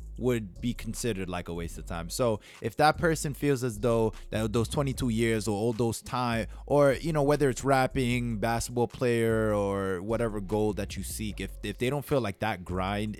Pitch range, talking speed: 90-120 Hz, 205 wpm